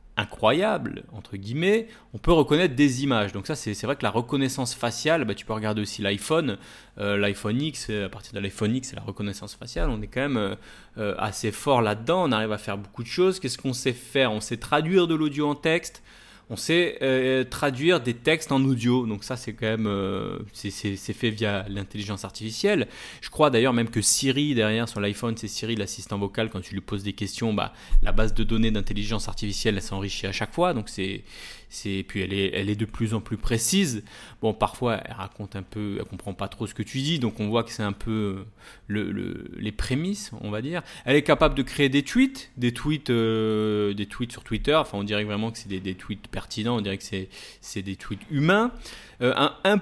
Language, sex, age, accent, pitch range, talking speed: French, male, 30-49, French, 105-135 Hz, 230 wpm